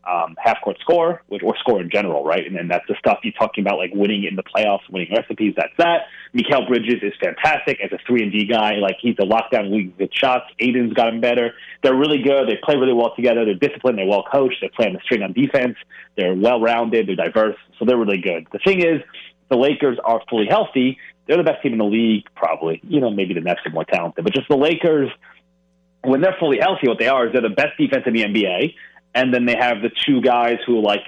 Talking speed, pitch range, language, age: 235 wpm, 100-125 Hz, English, 30-49